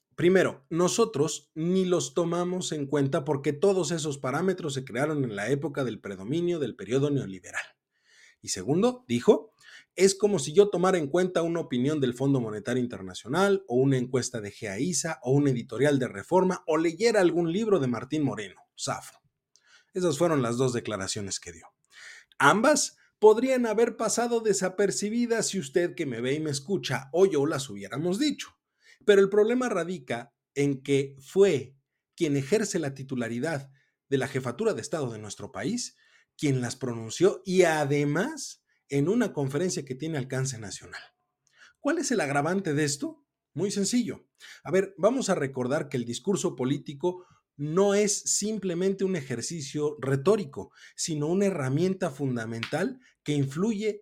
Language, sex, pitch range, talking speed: Spanish, male, 135-190 Hz, 155 wpm